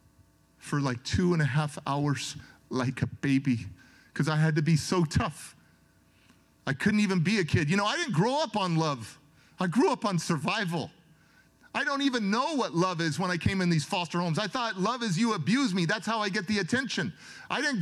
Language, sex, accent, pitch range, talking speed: English, male, American, 155-240 Hz, 220 wpm